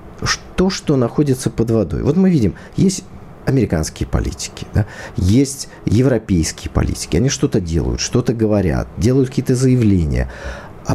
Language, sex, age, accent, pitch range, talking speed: Russian, male, 40-59, native, 90-125 Hz, 125 wpm